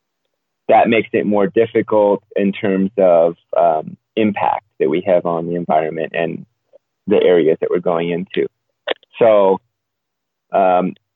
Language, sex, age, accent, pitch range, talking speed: English, male, 30-49, American, 95-115 Hz, 135 wpm